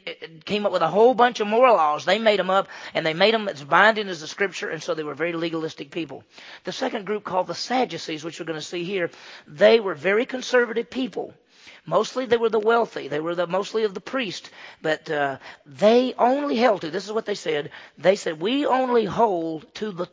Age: 40-59